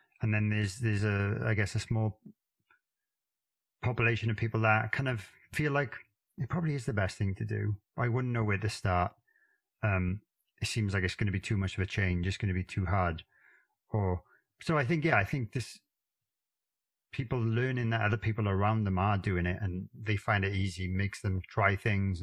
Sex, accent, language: male, British, English